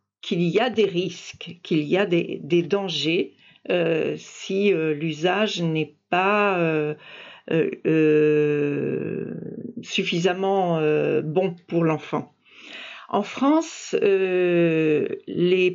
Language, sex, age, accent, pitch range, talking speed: French, female, 50-69, French, 170-230 Hz, 105 wpm